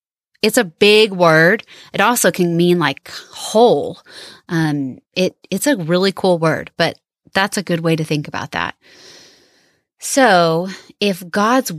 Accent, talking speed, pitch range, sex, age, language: American, 150 wpm, 170-230 Hz, female, 30-49, English